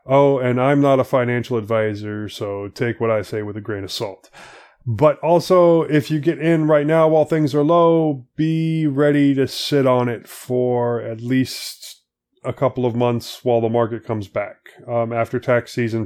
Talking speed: 190 wpm